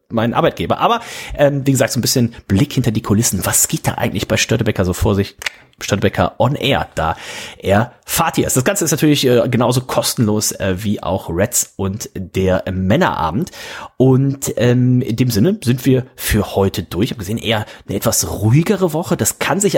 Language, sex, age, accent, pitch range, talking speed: German, male, 30-49, German, 115-150 Hz, 195 wpm